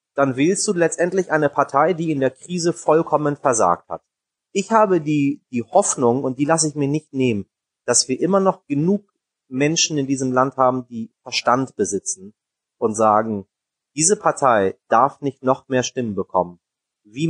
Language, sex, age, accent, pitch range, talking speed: German, male, 30-49, German, 115-155 Hz, 170 wpm